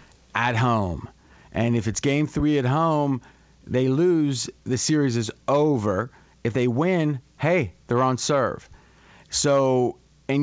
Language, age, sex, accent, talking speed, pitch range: English, 40-59, male, American, 140 wpm, 125-150 Hz